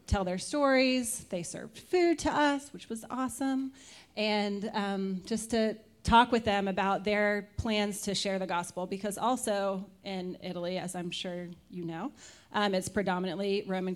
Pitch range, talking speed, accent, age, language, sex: 190-220 Hz, 165 wpm, American, 30-49, English, female